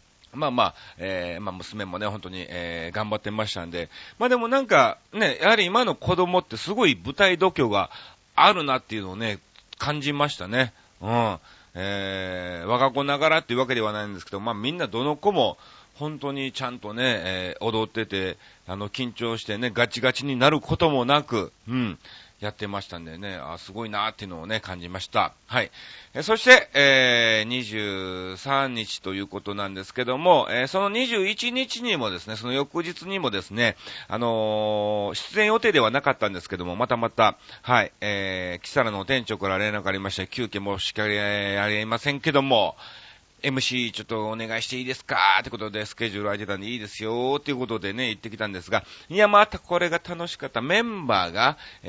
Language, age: Japanese, 40-59